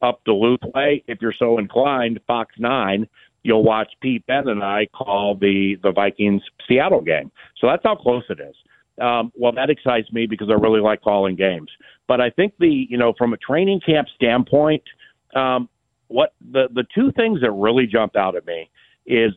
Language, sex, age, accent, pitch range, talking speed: English, male, 50-69, American, 105-125 Hz, 195 wpm